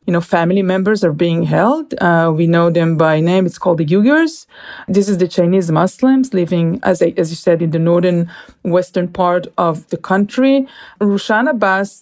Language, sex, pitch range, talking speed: English, female, 175-215 Hz, 185 wpm